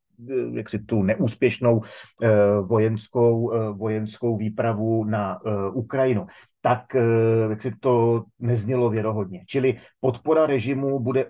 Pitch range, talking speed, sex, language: 105-120 Hz, 90 wpm, male, Slovak